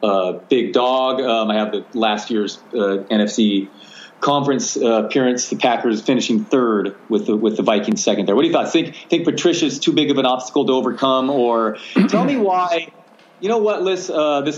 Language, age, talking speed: English, 30-49, 200 wpm